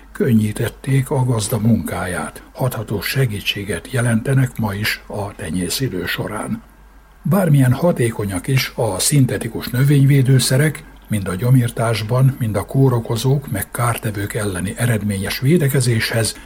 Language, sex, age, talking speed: Hungarian, male, 60-79, 110 wpm